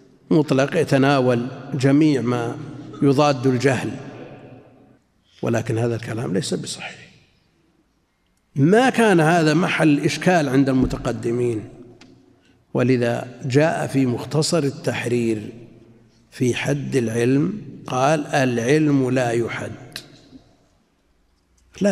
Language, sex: Arabic, male